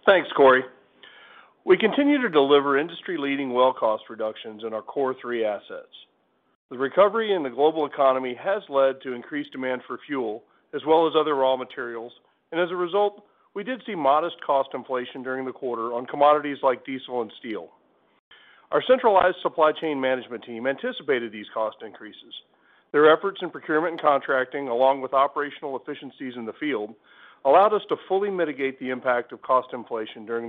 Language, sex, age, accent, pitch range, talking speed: English, male, 40-59, American, 130-180 Hz, 170 wpm